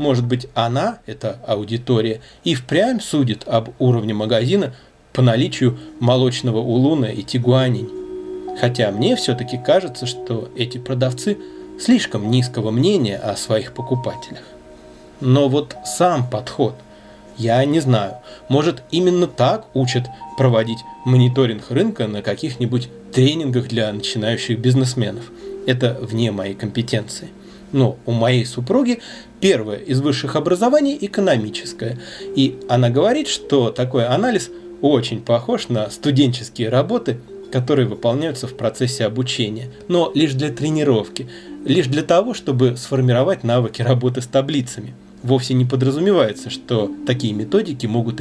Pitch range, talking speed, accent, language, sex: 115-145 Hz, 125 wpm, native, Russian, male